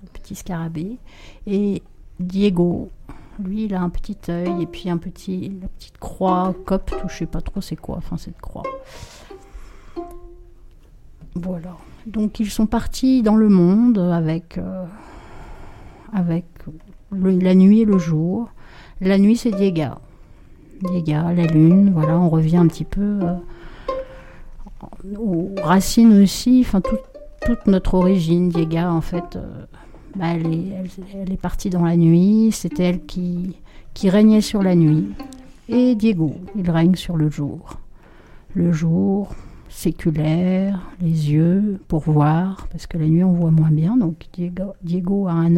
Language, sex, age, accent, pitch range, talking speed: French, female, 60-79, French, 170-225 Hz, 155 wpm